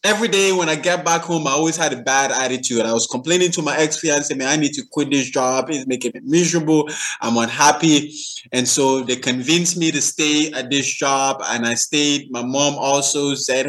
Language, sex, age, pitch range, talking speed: English, male, 20-39, 125-160 Hz, 215 wpm